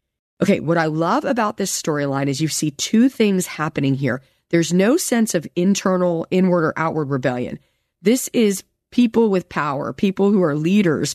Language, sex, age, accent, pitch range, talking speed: English, female, 40-59, American, 150-220 Hz, 170 wpm